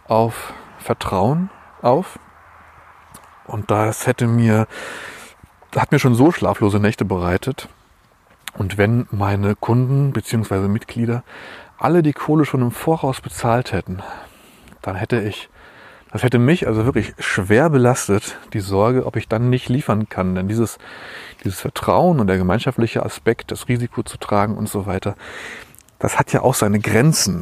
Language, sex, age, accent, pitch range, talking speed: German, male, 30-49, German, 100-130 Hz, 150 wpm